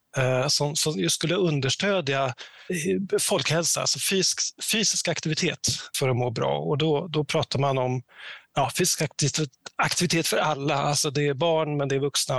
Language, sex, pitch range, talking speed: English, male, 135-165 Hz, 140 wpm